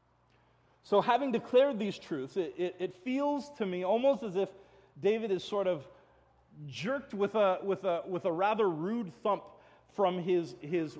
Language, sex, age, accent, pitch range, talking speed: English, male, 30-49, American, 160-215 Hz, 170 wpm